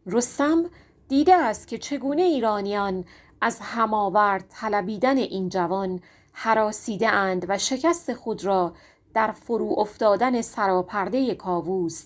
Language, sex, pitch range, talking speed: Persian, female, 190-255 Hz, 110 wpm